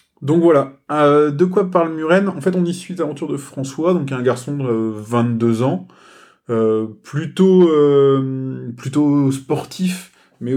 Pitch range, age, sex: 115-140 Hz, 20-39, male